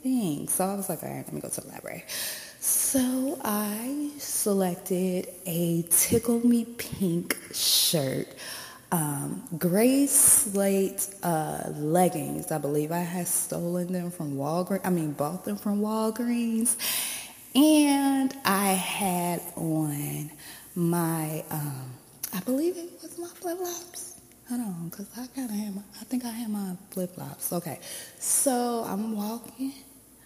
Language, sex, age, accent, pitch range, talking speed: English, female, 20-39, American, 165-240 Hz, 140 wpm